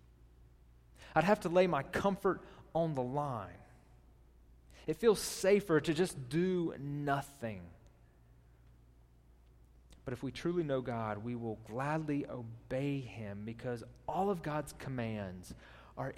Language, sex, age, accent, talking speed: English, male, 30-49, American, 120 wpm